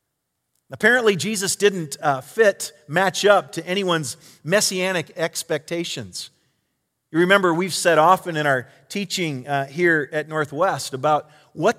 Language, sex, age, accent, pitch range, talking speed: English, male, 40-59, American, 145-200 Hz, 125 wpm